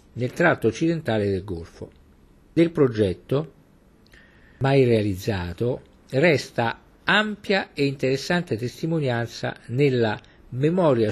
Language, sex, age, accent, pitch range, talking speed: Italian, male, 50-69, native, 110-150 Hz, 85 wpm